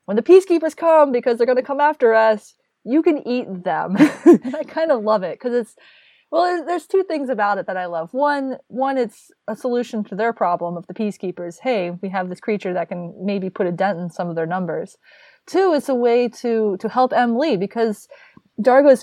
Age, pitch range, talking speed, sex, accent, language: 20-39, 175-240 Hz, 220 wpm, female, American, English